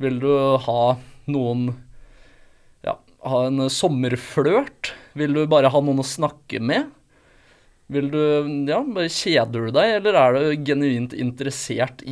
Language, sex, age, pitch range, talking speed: English, male, 20-39, 125-150 Hz, 130 wpm